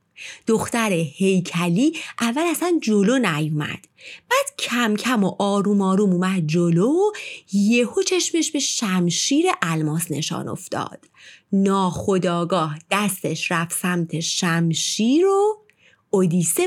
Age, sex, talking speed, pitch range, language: 30-49, female, 100 wpm, 180-300 Hz, Persian